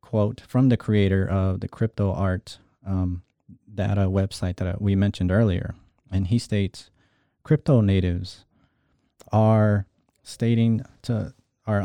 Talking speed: 115 wpm